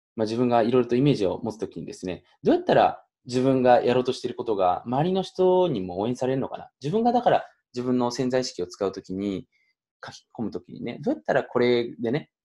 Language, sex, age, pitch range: Japanese, male, 20-39, 115-180 Hz